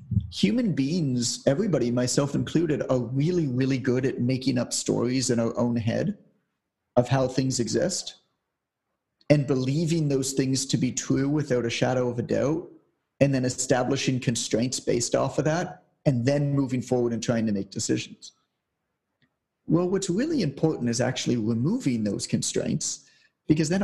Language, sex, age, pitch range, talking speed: English, male, 30-49, 120-150 Hz, 155 wpm